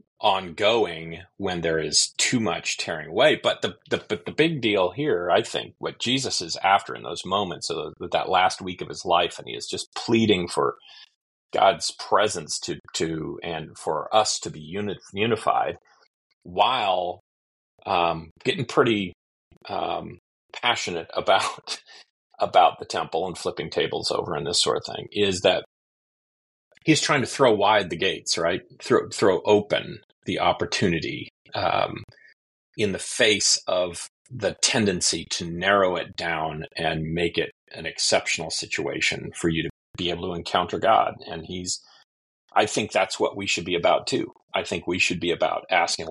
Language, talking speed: English, 165 wpm